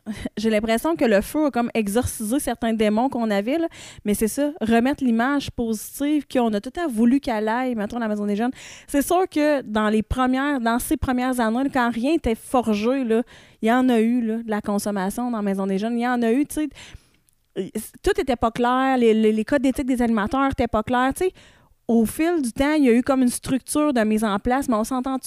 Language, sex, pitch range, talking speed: French, female, 215-265 Hz, 240 wpm